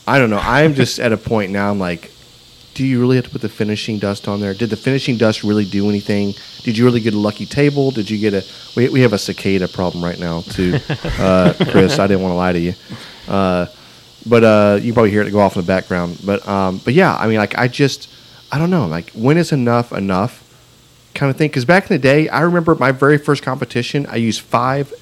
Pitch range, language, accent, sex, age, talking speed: 100-125 Hz, English, American, male, 30-49, 250 wpm